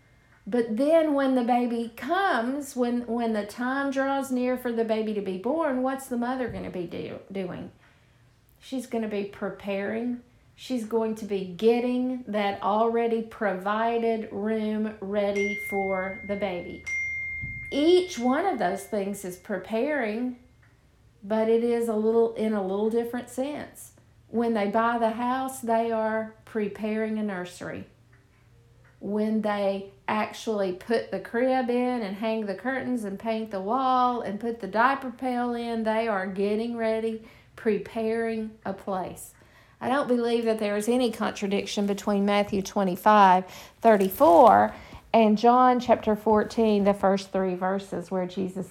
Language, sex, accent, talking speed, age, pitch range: English, female, American, 145 wpm, 50-69, 195-240 Hz